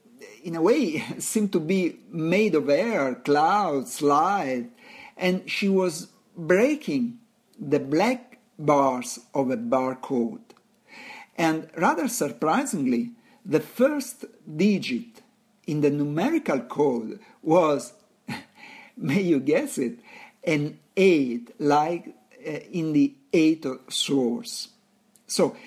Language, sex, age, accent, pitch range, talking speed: English, male, 50-69, Italian, 150-245 Hz, 105 wpm